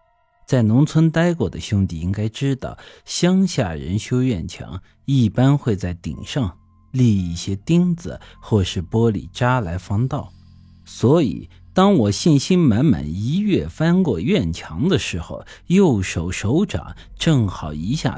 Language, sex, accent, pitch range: Chinese, male, native, 90-145 Hz